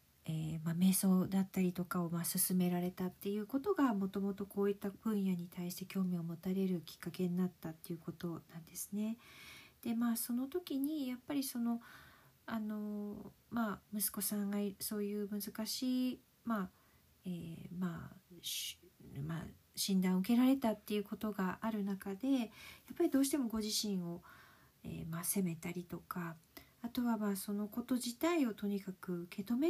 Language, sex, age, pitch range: Japanese, female, 40-59, 185-240 Hz